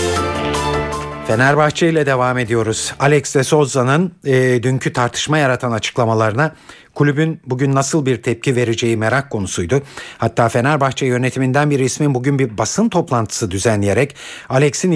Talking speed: 125 wpm